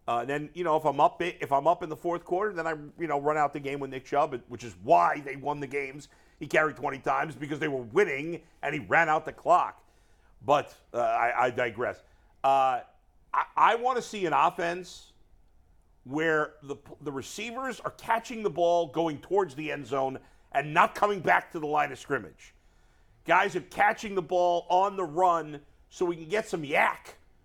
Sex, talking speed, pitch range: male, 210 wpm, 135-175 Hz